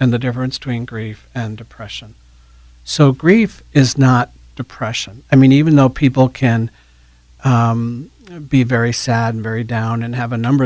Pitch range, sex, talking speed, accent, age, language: 115-135 Hz, male, 165 wpm, American, 50-69, English